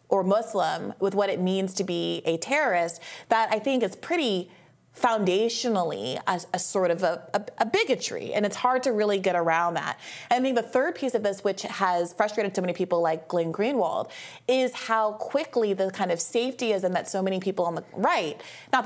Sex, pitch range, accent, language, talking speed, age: female, 170-215 Hz, American, English, 195 wpm, 30-49